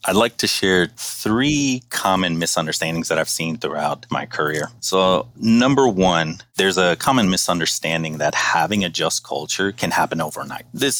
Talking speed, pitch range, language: 160 wpm, 80-105 Hz, English